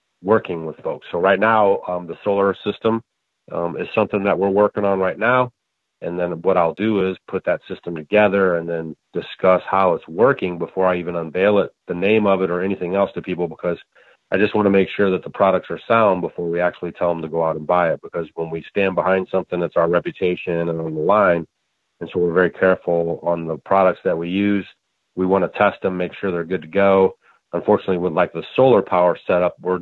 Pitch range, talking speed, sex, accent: 85-100 Hz, 230 wpm, male, American